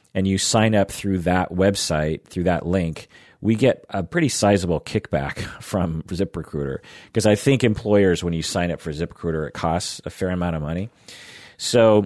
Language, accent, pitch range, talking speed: English, American, 85-110 Hz, 180 wpm